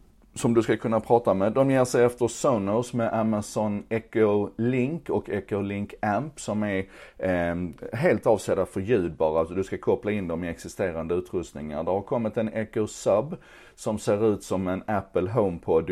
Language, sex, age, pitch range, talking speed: Swedish, male, 30-49, 90-115 Hz, 175 wpm